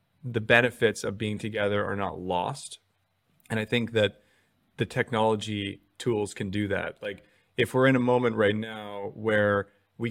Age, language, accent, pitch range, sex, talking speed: 30-49, English, American, 100-115 Hz, male, 165 wpm